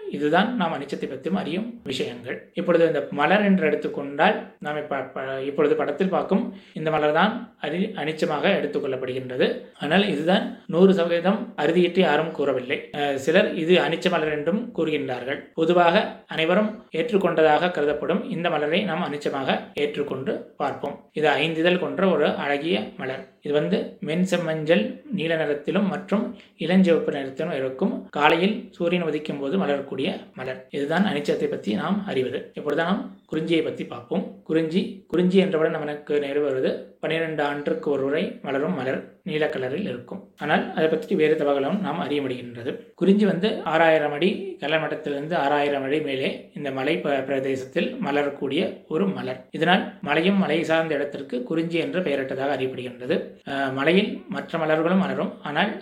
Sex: male